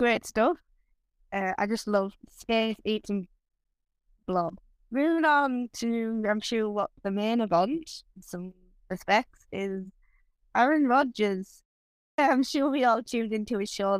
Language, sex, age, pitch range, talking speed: English, female, 10-29, 185-235 Hz, 135 wpm